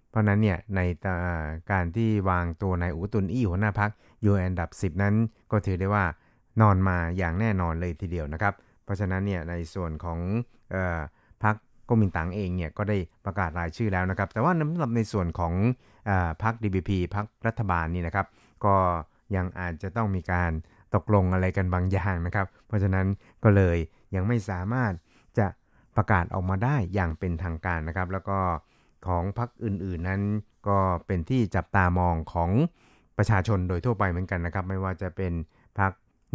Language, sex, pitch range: Thai, male, 90-105 Hz